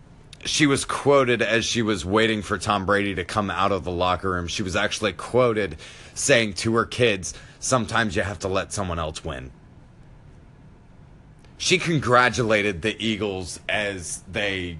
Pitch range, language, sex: 95-130 Hz, English, male